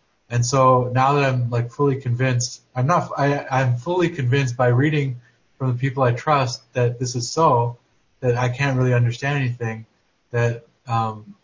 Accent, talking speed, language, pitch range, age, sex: American, 175 wpm, English, 120-135 Hz, 20-39, male